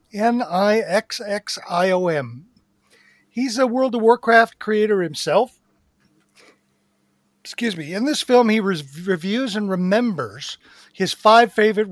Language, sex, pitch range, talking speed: English, male, 155-210 Hz, 100 wpm